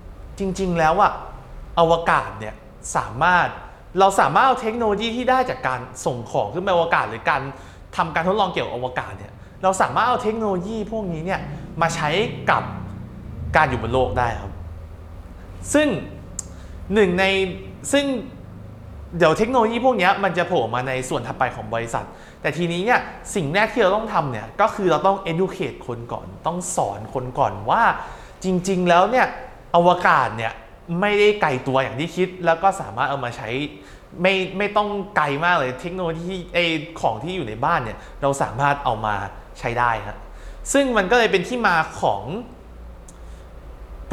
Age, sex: 20-39, male